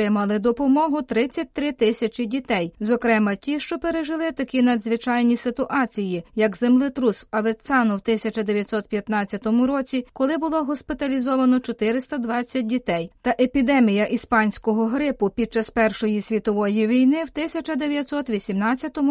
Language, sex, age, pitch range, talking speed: Ukrainian, female, 30-49, 225-280 Hz, 105 wpm